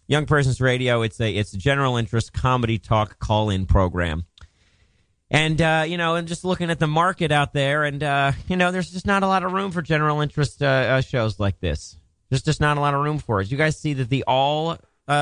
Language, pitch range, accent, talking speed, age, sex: English, 85-130 Hz, American, 240 wpm, 30-49, male